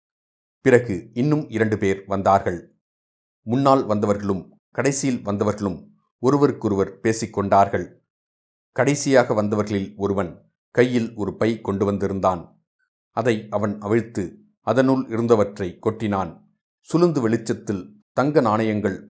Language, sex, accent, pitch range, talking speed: Tamil, male, native, 100-120 Hz, 90 wpm